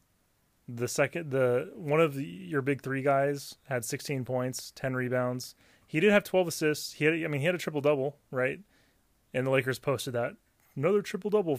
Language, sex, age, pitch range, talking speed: English, male, 20-39, 125-155 Hz, 190 wpm